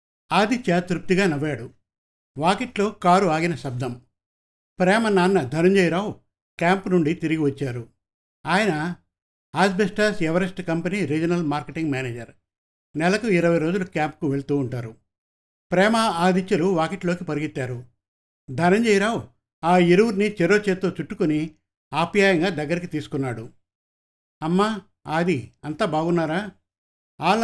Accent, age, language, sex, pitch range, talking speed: native, 60-79, Telugu, male, 135-185 Hz, 100 wpm